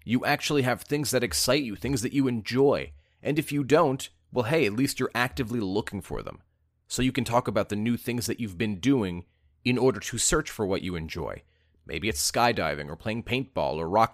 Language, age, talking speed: English, 30-49, 220 wpm